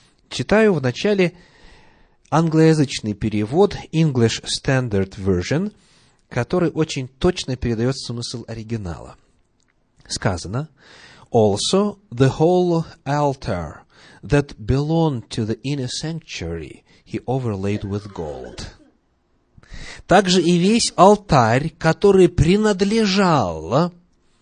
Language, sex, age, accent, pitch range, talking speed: Russian, male, 30-49, native, 115-175 Hz, 50 wpm